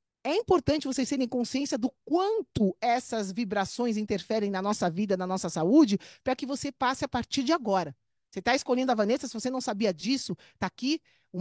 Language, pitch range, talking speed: Portuguese, 210-275 Hz, 195 wpm